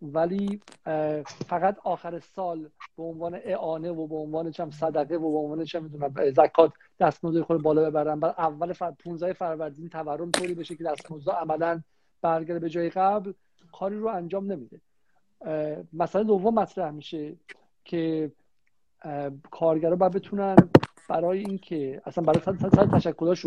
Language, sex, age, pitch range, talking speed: Persian, male, 50-69, 160-195 Hz, 140 wpm